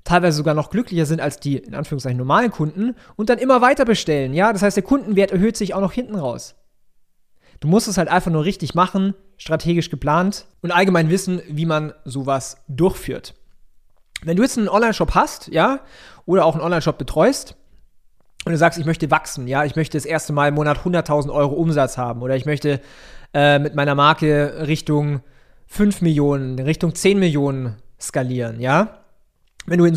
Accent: German